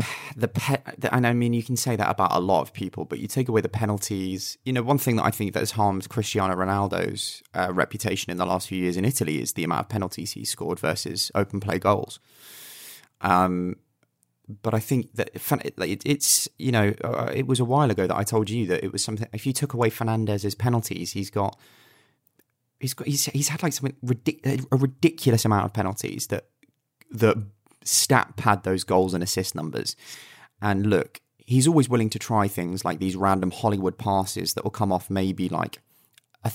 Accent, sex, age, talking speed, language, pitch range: British, male, 20-39, 200 wpm, English, 95-120 Hz